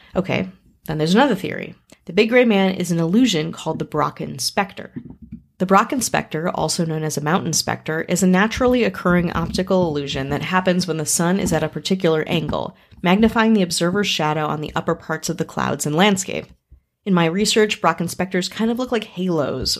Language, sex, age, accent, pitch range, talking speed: English, female, 30-49, American, 155-200 Hz, 195 wpm